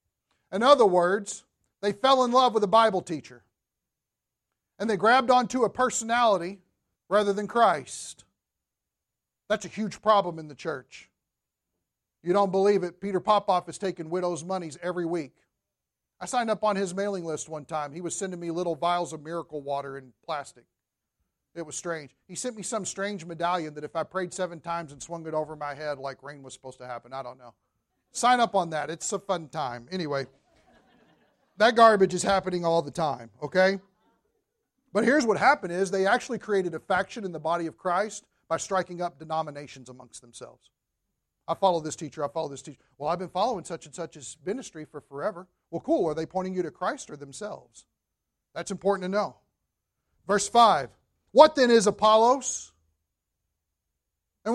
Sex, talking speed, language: male, 185 wpm, English